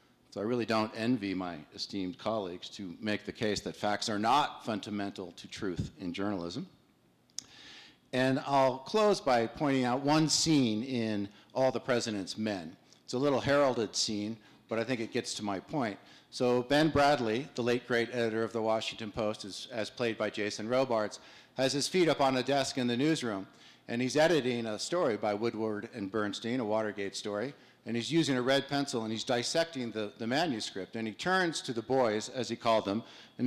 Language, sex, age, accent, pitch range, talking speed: English, male, 50-69, American, 110-135 Hz, 195 wpm